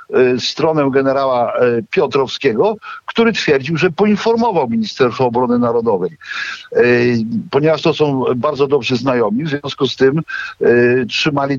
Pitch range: 125-165 Hz